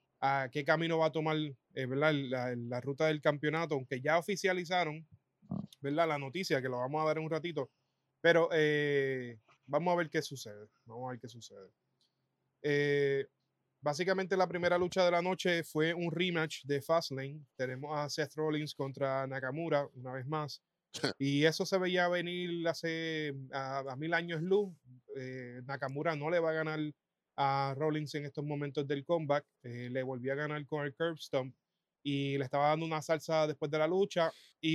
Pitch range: 135-165 Hz